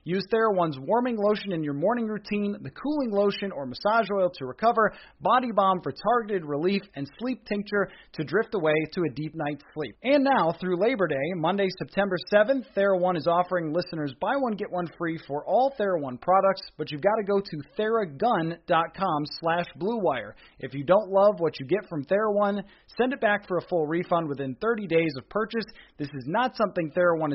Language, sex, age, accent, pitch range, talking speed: English, male, 30-49, American, 155-210 Hz, 195 wpm